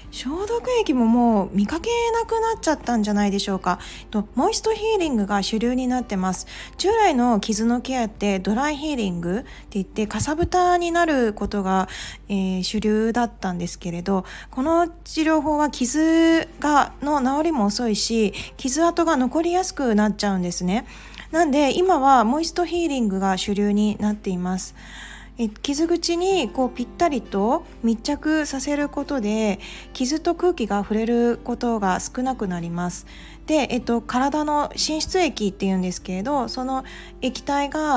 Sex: female